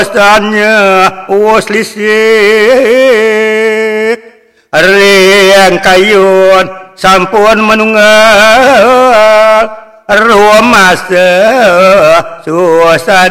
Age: 60-79